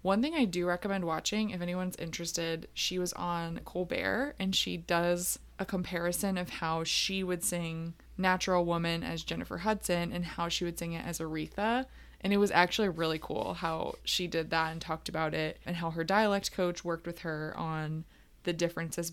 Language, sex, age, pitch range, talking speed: English, female, 20-39, 165-200 Hz, 190 wpm